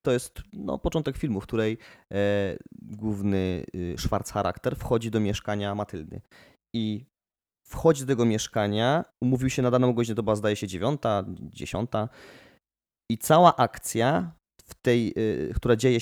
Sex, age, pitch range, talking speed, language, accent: male, 20-39, 105-125 Hz, 150 wpm, Polish, native